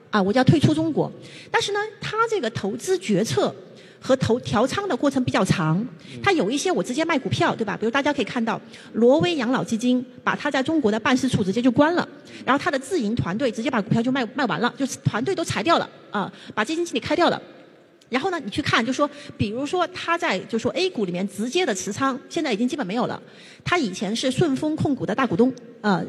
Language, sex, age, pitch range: Chinese, female, 30-49, 220-305 Hz